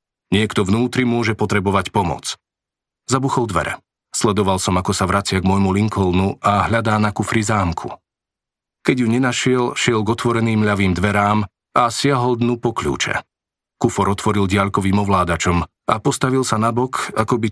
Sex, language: male, Slovak